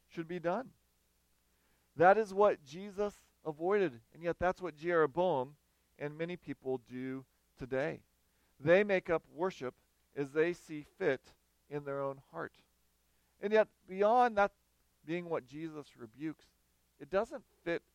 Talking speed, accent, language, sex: 135 wpm, American, English, male